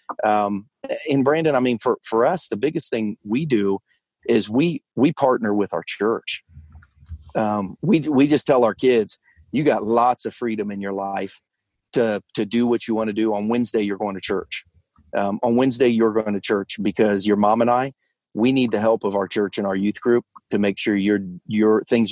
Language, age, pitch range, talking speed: English, 40-59, 105-120 Hz, 210 wpm